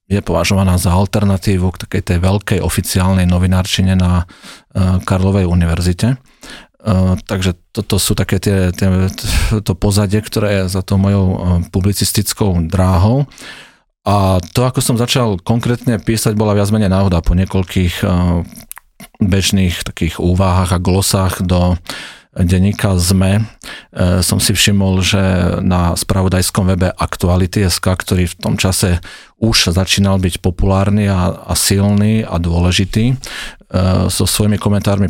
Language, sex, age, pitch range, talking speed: Slovak, male, 40-59, 90-100 Hz, 130 wpm